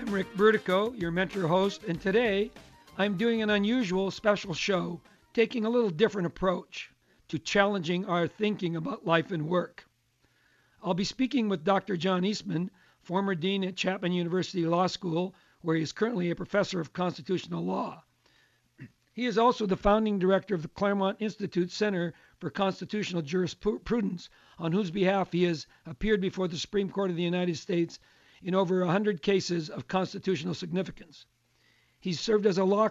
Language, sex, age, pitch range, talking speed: English, male, 60-79, 170-205 Hz, 165 wpm